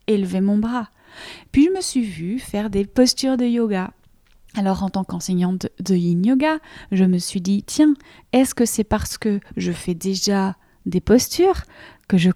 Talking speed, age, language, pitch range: 185 wpm, 30-49, French, 195-260 Hz